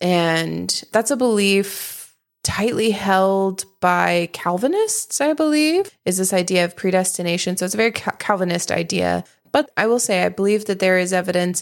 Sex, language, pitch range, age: female, English, 175-215 Hz, 20-39